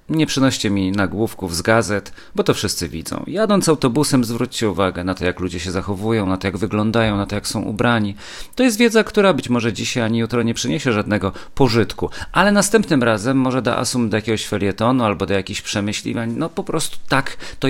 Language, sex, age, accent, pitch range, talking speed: Polish, male, 40-59, native, 100-135 Hz, 205 wpm